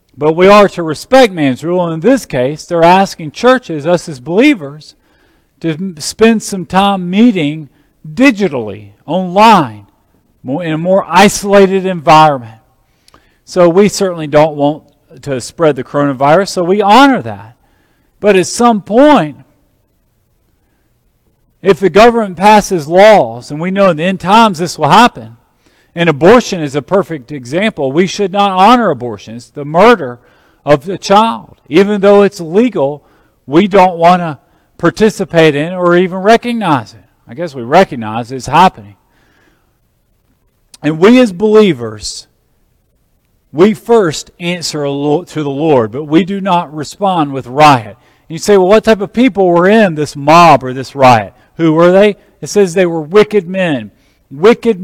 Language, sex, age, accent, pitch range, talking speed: English, male, 40-59, American, 145-200 Hz, 155 wpm